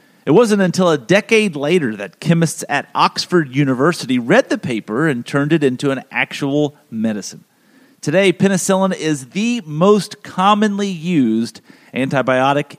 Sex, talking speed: male, 135 wpm